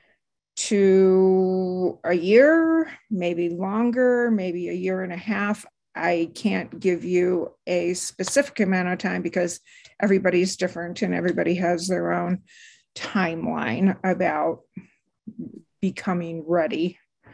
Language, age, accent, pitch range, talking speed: English, 50-69, American, 170-195 Hz, 110 wpm